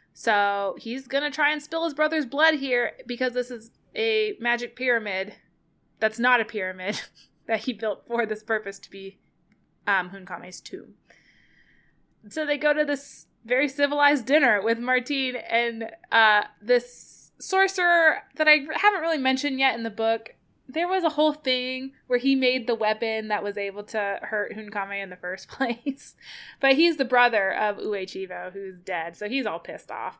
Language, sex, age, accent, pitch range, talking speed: English, female, 20-39, American, 195-265 Hz, 175 wpm